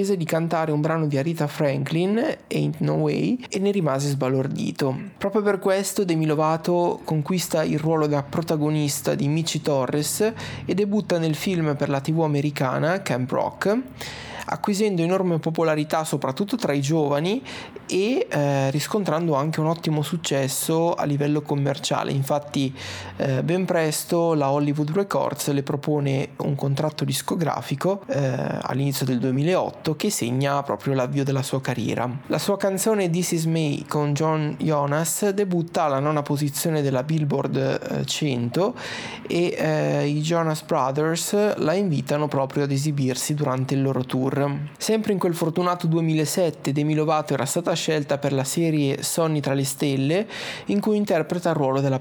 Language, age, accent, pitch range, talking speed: Italian, 20-39, native, 140-170 Hz, 150 wpm